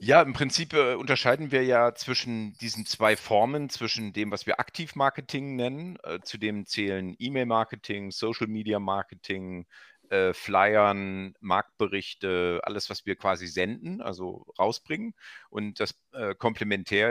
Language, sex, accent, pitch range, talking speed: German, male, German, 95-120 Hz, 125 wpm